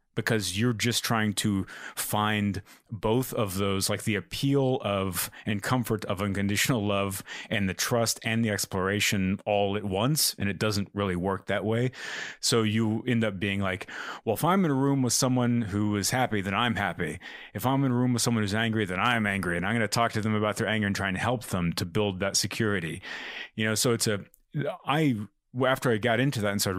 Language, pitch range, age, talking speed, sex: English, 95-115 Hz, 30-49, 220 wpm, male